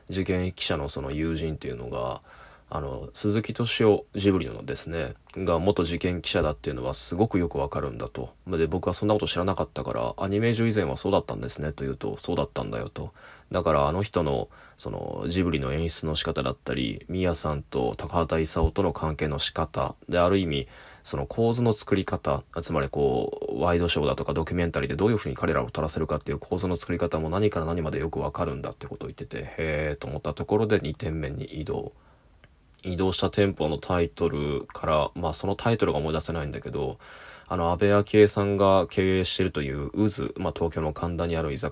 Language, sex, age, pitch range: Japanese, male, 20-39, 80-100 Hz